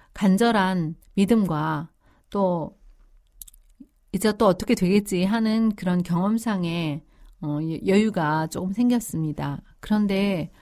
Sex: female